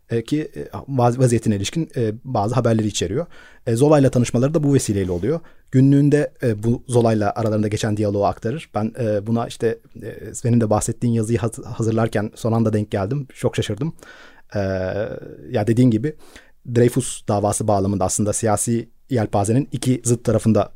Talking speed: 130 wpm